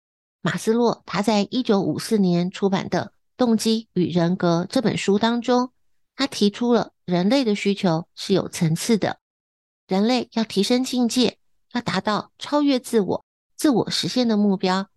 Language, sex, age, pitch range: Chinese, female, 50-69, 185-235 Hz